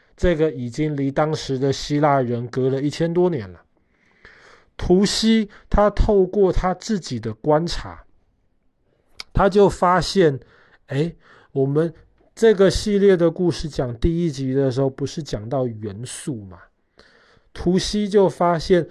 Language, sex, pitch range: Chinese, male, 130-180 Hz